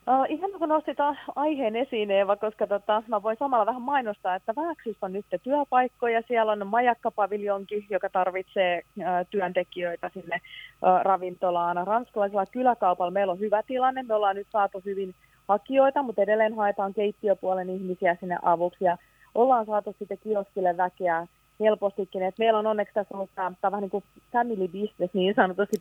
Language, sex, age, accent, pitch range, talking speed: Finnish, female, 30-49, native, 180-215 Hz, 165 wpm